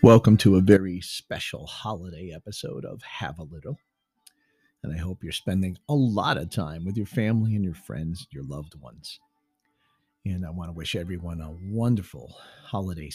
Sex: male